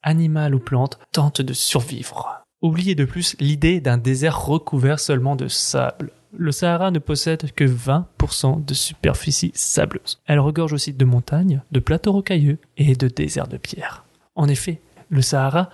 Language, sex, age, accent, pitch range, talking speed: French, male, 20-39, French, 125-155 Hz, 160 wpm